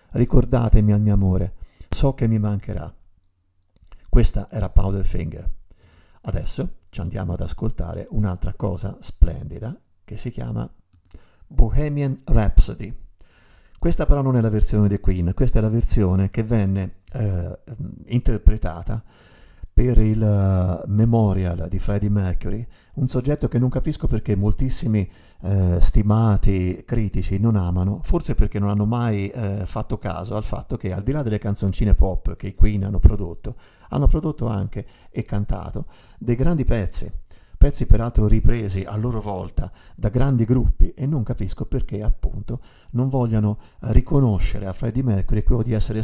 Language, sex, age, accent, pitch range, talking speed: Italian, male, 50-69, native, 95-115 Hz, 145 wpm